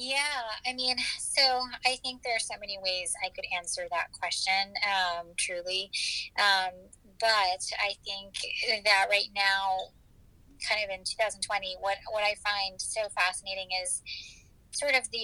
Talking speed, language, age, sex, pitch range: 155 wpm, English, 20-39, female, 175-205 Hz